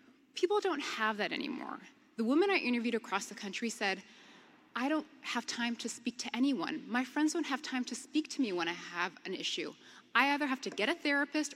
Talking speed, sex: 220 wpm, female